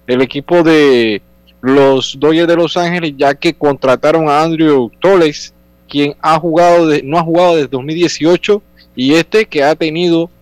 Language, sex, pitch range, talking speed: Spanish, male, 135-170 Hz, 160 wpm